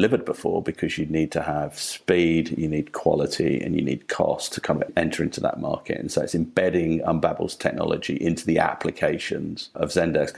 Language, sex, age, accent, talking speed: English, male, 40-59, British, 195 wpm